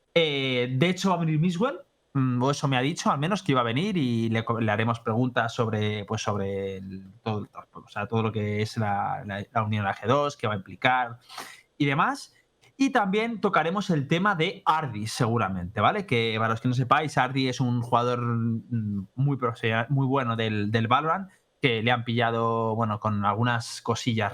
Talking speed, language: 195 wpm, Spanish